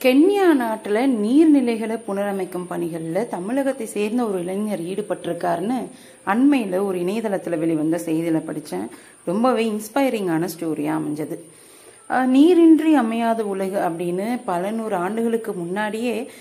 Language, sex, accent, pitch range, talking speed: Tamil, female, native, 180-255 Hz, 100 wpm